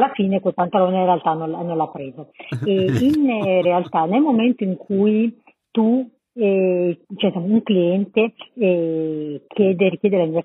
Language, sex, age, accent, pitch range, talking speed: Italian, female, 40-59, native, 170-205 Hz, 150 wpm